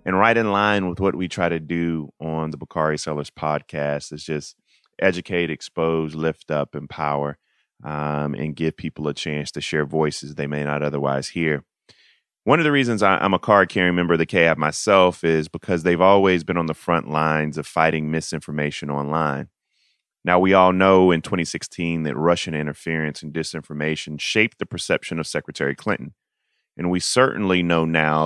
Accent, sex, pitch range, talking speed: American, male, 75-90 Hz, 175 wpm